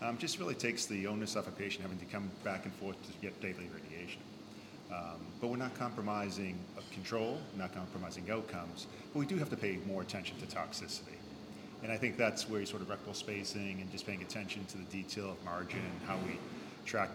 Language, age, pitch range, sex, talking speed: English, 40-59, 95-110 Hz, male, 215 wpm